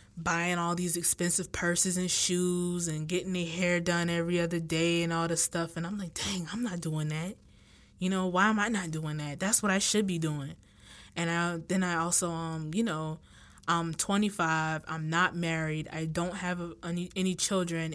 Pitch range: 160-185 Hz